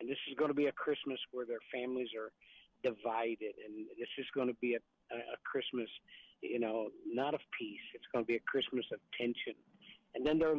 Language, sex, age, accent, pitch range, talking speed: English, male, 50-69, American, 115-150 Hz, 220 wpm